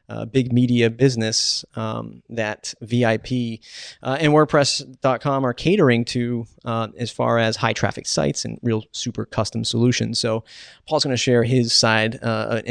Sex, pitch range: male, 115-130 Hz